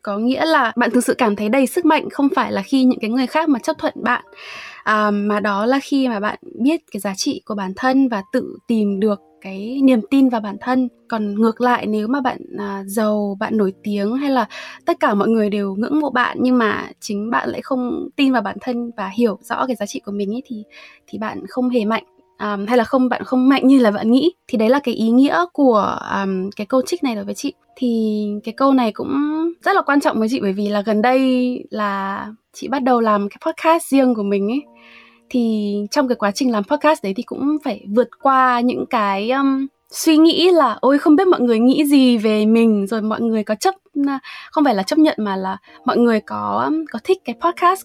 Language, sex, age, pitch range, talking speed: Vietnamese, female, 20-39, 215-275 Hz, 240 wpm